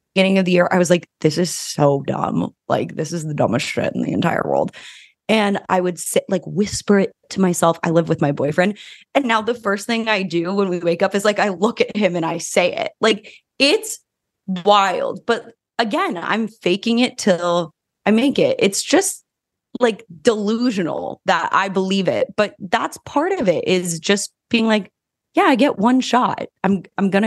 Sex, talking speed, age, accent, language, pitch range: female, 205 wpm, 20-39, American, English, 170-225 Hz